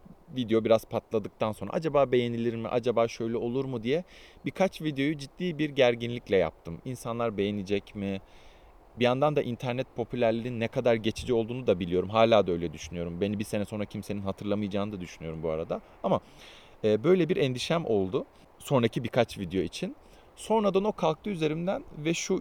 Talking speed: 165 wpm